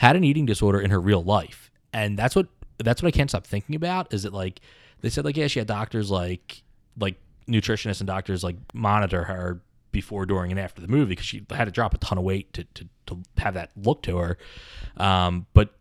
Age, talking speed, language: 20-39, 230 wpm, English